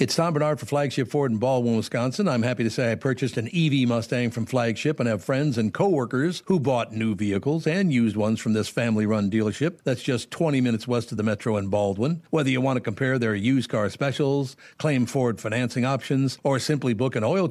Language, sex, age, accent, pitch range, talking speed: English, male, 60-79, American, 115-145 Hz, 220 wpm